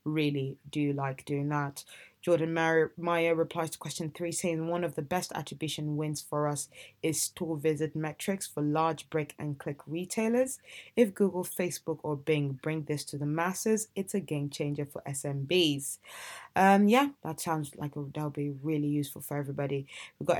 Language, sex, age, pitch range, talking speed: English, female, 20-39, 145-175 Hz, 175 wpm